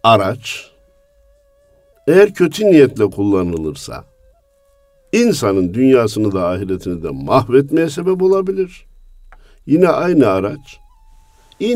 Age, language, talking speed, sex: 50-69, Turkish, 85 wpm, male